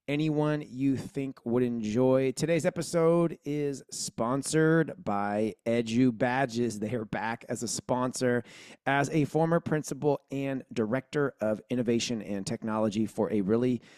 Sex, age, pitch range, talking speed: male, 30-49, 120-150 Hz, 135 wpm